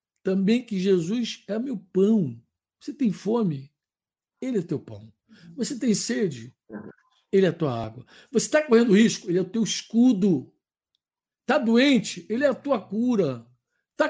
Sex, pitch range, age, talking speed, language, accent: male, 170-240 Hz, 60-79, 160 wpm, Portuguese, Brazilian